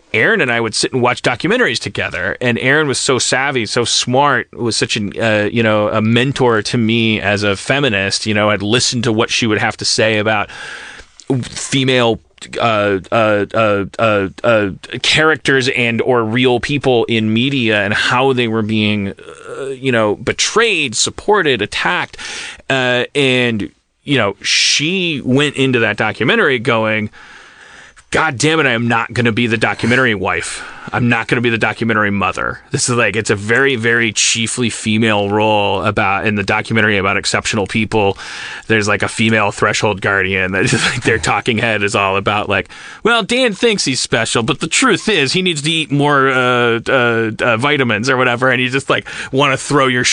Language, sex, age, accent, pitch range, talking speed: English, male, 30-49, American, 105-130 Hz, 185 wpm